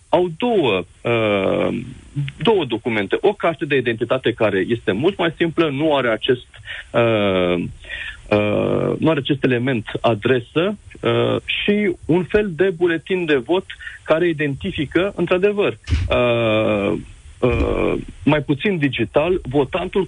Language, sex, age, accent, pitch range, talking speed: Romanian, male, 40-59, native, 130-175 Hz, 100 wpm